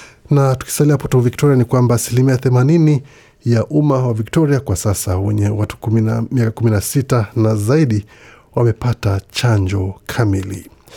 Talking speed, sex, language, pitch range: 115 wpm, male, Swahili, 105-125 Hz